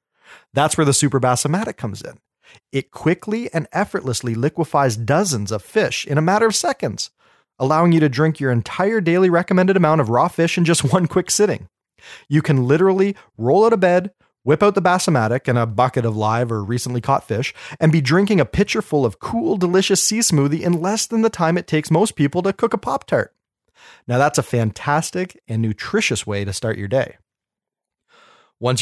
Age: 30-49